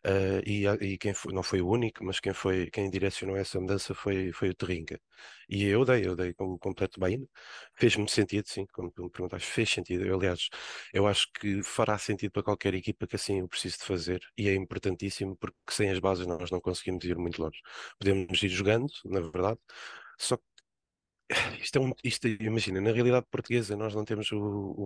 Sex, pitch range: male, 100-120 Hz